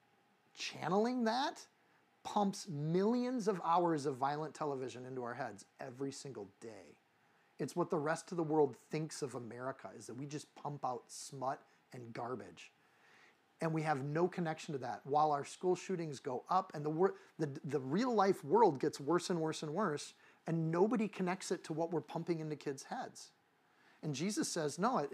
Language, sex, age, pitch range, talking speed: English, male, 40-59, 145-180 Hz, 185 wpm